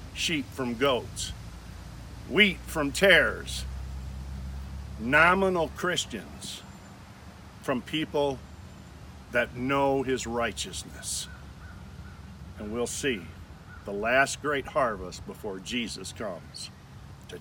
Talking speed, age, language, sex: 85 wpm, 50-69, English, male